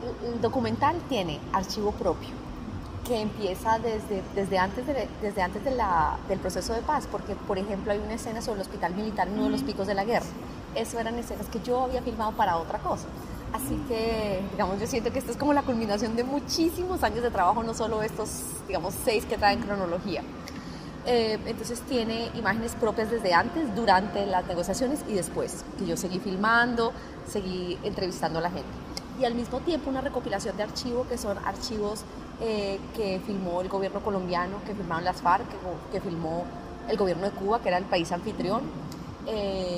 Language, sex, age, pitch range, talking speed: Spanish, female, 30-49, 185-235 Hz, 190 wpm